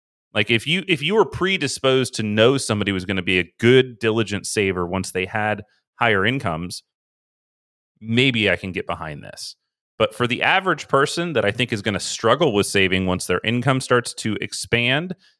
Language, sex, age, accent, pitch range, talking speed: English, male, 30-49, American, 100-130 Hz, 190 wpm